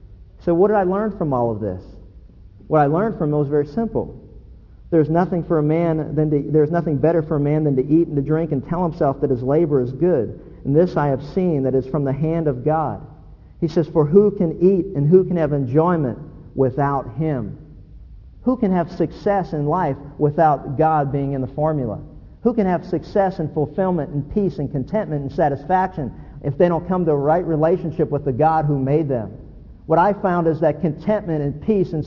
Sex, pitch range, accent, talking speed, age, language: male, 145-175 Hz, American, 215 wpm, 50-69, English